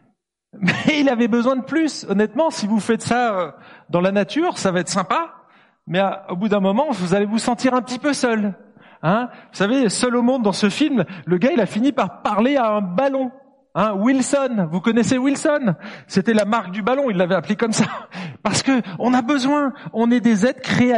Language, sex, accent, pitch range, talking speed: French, male, French, 185-250 Hz, 215 wpm